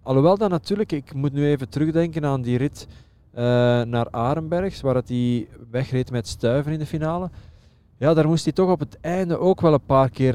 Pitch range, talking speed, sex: 115-140 Hz, 205 wpm, male